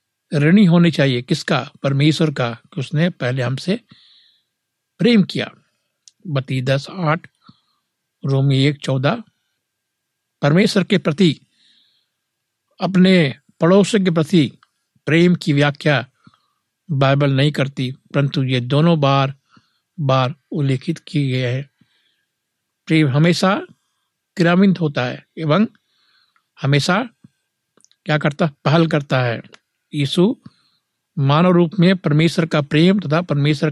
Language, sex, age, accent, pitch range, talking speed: Hindi, male, 60-79, native, 135-175 Hz, 110 wpm